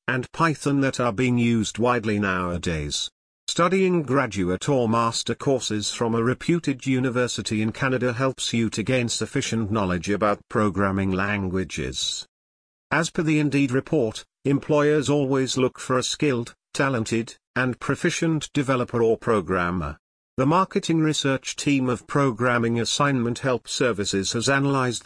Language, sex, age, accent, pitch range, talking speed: English, male, 50-69, British, 105-140 Hz, 135 wpm